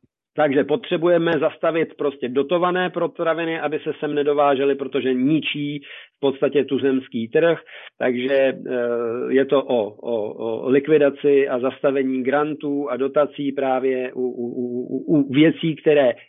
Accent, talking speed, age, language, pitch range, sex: native, 135 wpm, 40-59, Czech, 135-155 Hz, male